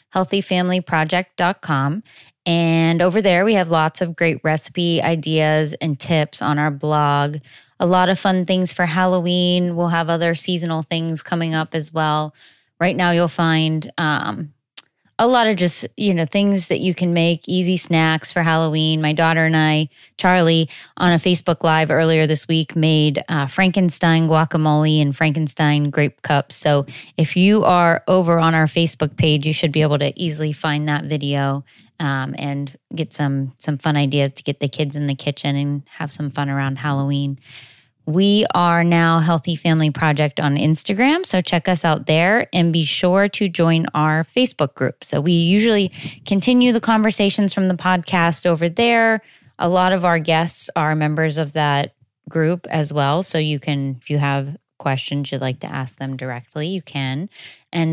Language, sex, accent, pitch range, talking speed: English, female, American, 150-180 Hz, 175 wpm